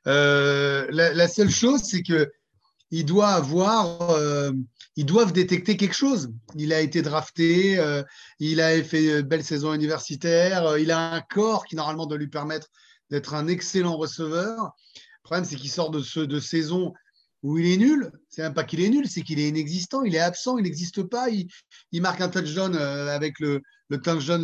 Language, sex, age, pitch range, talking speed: French, male, 30-49, 155-210 Hz, 185 wpm